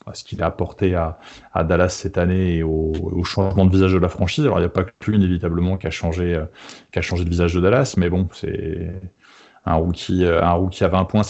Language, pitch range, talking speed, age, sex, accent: French, 85-100 Hz, 235 wpm, 20-39, male, French